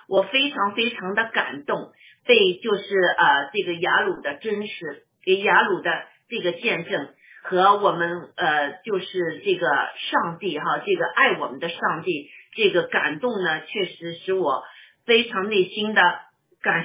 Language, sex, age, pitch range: Chinese, female, 50-69, 190-255 Hz